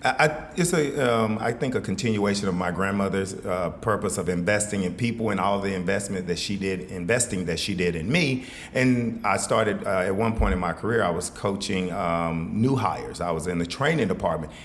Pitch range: 90-110 Hz